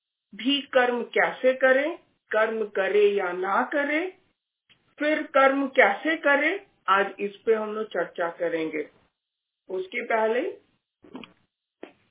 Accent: native